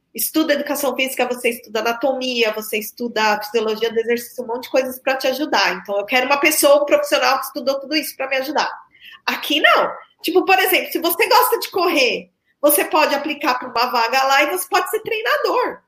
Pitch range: 235-310 Hz